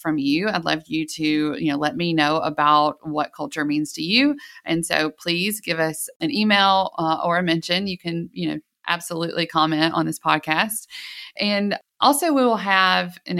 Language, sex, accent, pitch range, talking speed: English, female, American, 160-205 Hz, 195 wpm